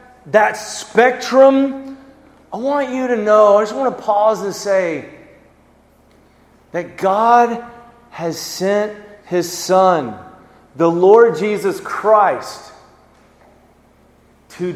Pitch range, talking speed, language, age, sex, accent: 175-240 Hz, 100 wpm, English, 30-49, male, American